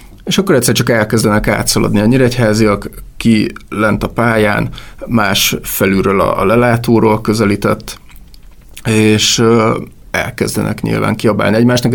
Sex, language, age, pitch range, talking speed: male, Hungarian, 30-49, 105-120 Hz, 110 wpm